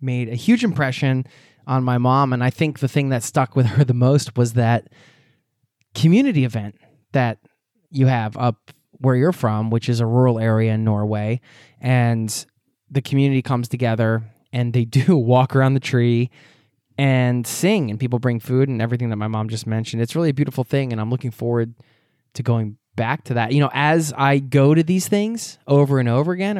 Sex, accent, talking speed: male, American, 195 wpm